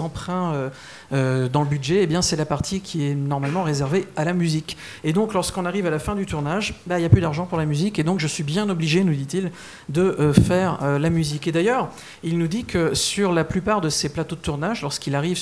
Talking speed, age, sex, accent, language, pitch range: 255 wpm, 50-69, male, French, French, 155-195 Hz